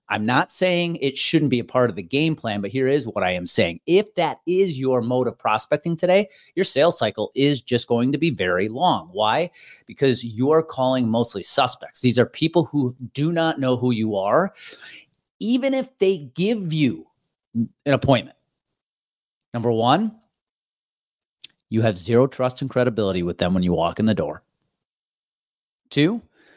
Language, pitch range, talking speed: English, 125-175 Hz, 175 wpm